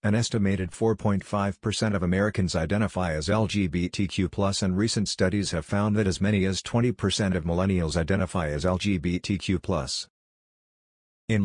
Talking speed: 125 wpm